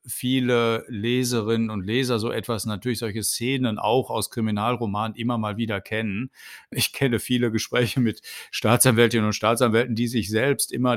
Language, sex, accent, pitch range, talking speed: German, male, German, 105-120 Hz, 155 wpm